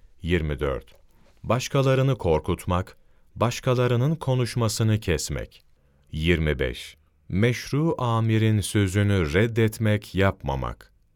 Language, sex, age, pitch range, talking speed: Turkish, male, 40-59, 75-110 Hz, 65 wpm